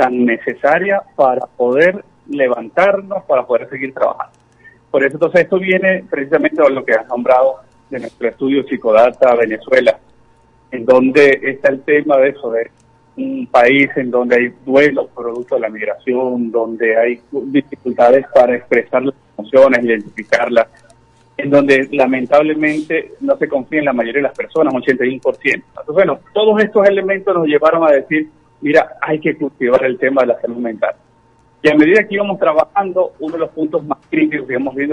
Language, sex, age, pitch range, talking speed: Spanish, male, 40-59, 125-170 Hz, 170 wpm